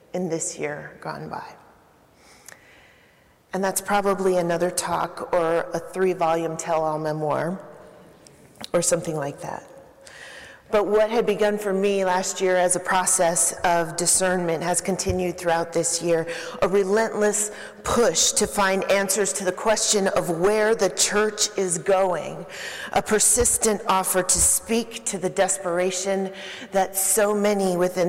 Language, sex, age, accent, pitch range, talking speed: English, female, 40-59, American, 170-195 Hz, 140 wpm